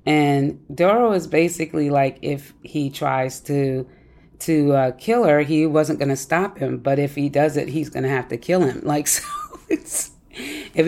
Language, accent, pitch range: English, American, 140-165 Hz